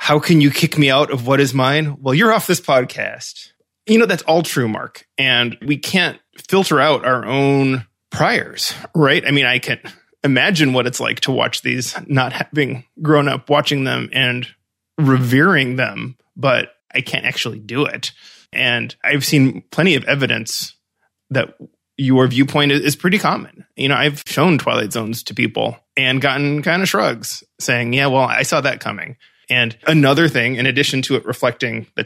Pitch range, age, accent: 125-150 Hz, 20-39, American